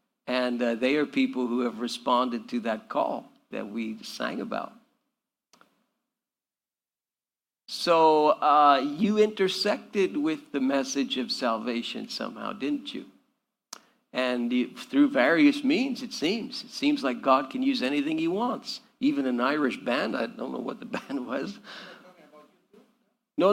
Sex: male